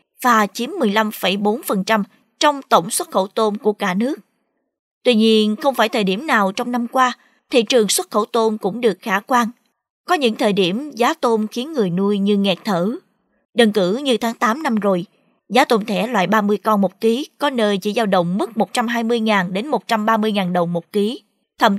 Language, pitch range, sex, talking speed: Vietnamese, 205-245 Hz, female, 185 wpm